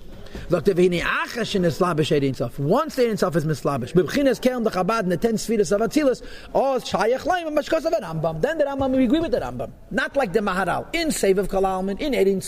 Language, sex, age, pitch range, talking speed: English, male, 40-59, 170-230 Hz, 135 wpm